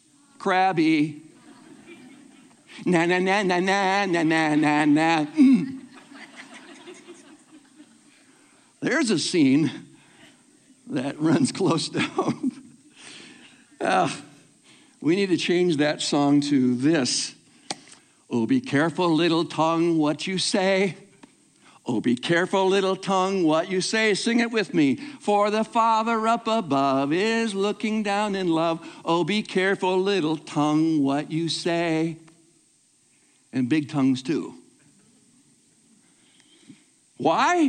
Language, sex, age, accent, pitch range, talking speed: English, male, 60-79, American, 170-270 Hz, 110 wpm